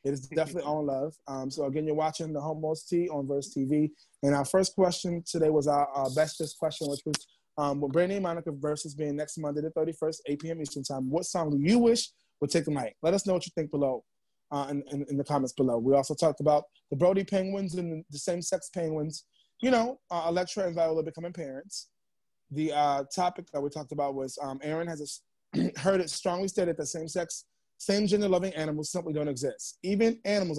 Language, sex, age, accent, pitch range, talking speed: English, male, 20-39, American, 145-185 Hz, 220 wpm